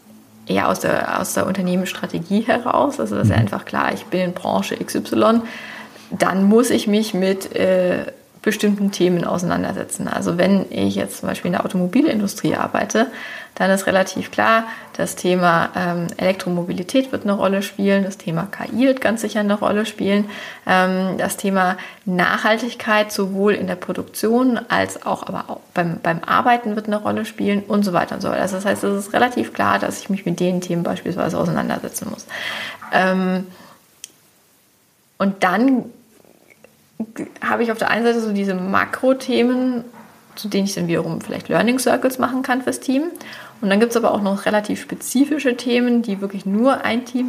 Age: 20-39